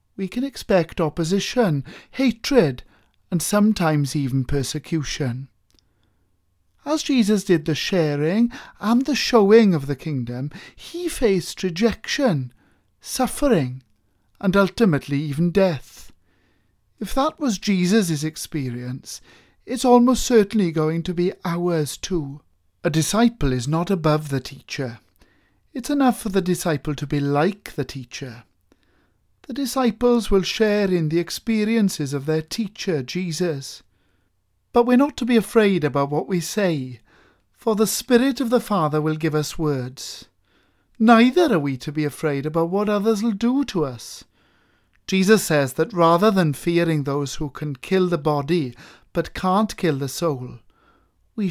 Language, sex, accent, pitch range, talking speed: English, male, British, 140-215 Hz, 140 wpm